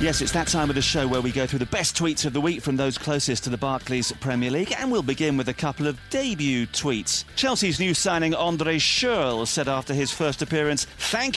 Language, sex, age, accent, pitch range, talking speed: English, male, 40-59, British, 135-175 Hz, 240 wpm